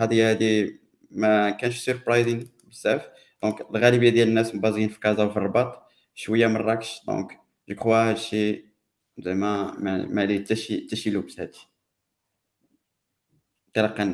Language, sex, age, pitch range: Arabic, male, 20-39, 100-115 Hz